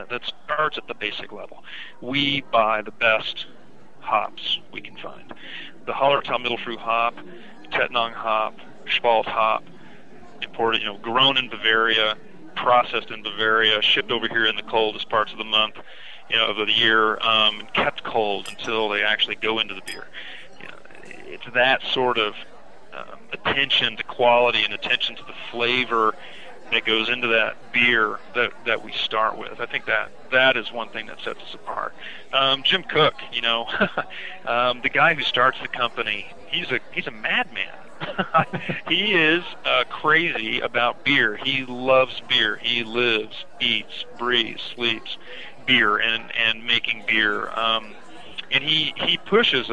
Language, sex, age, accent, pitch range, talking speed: English, male, 40-59, American, 110-130 Hz, 160 wpm